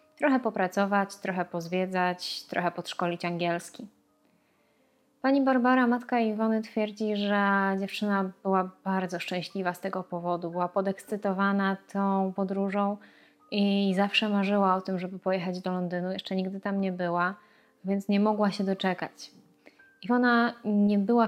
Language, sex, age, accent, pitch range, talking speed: Polish, female, 20-39, native, 185-220 Hz, 130 wpm